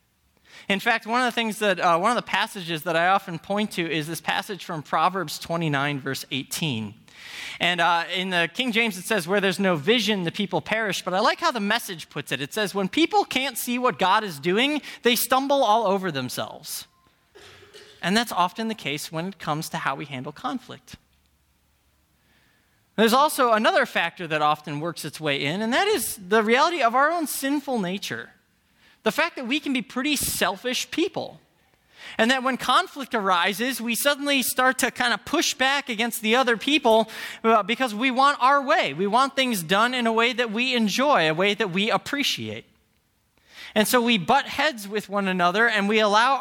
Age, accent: 20-39, American